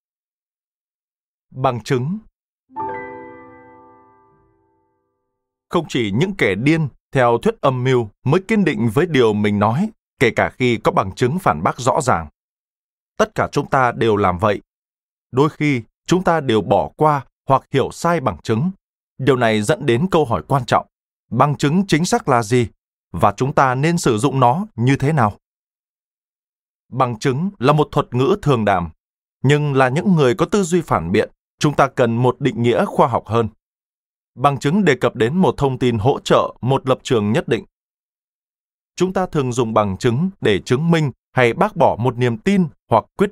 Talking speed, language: 180 wpm, Vietnamese